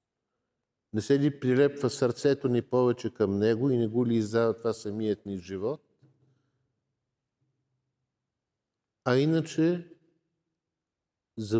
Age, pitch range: 50-69, 105-130 Hz